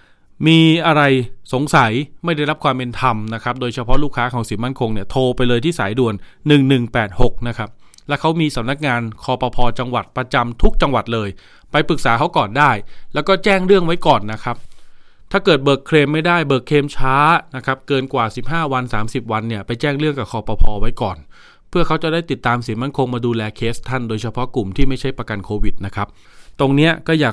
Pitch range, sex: 115-145 Hz, male